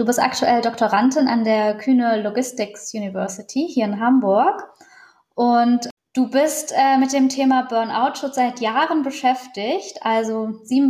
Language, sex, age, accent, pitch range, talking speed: German, female, 20-39, German, 220-270 Hz, 140 wpm